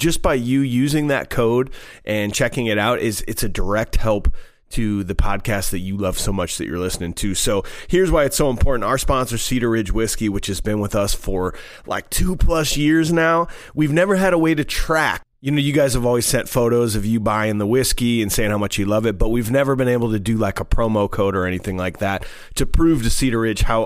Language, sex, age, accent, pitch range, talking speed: English, male, 30-49, American, 105-130 Hz, 245 wpm